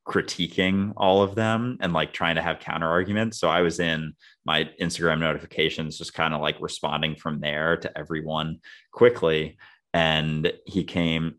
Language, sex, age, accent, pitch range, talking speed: English, male, 30-49, American, 80-90 Hz, 165 wpm